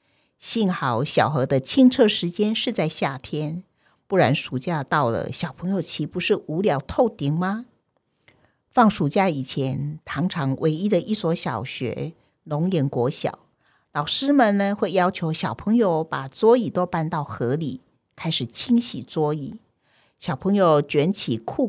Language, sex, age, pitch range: Chinese, female, 50-69, 145-210 Hz